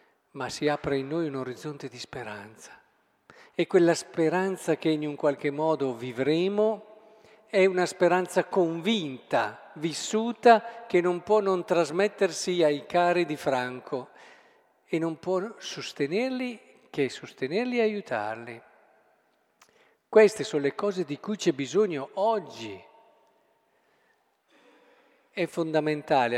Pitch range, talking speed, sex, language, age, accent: 145-200 Hz, 115 wpm, male, Italian, 50-69, native